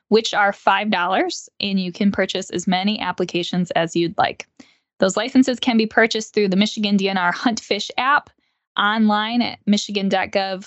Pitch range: 185-235 Hz